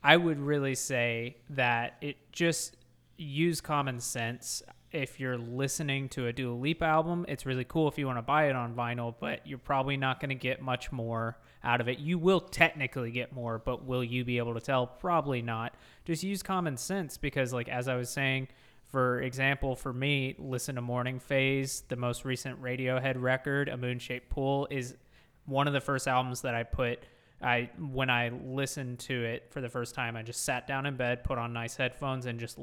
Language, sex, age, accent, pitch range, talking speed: English, male, 20-39, American, 120-140 Hz, 205 wpm